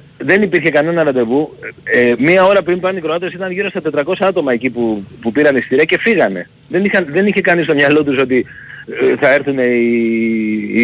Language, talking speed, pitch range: Greek, 205 wpm, 130-200 Hz